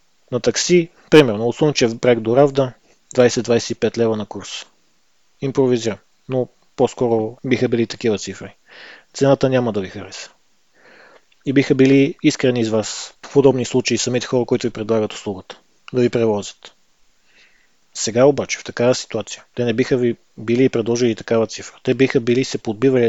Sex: male